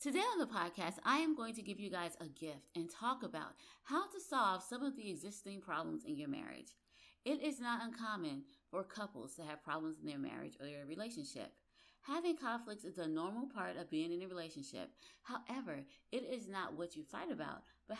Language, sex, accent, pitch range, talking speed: English, female, American, 175-285 Hz, 205 wpm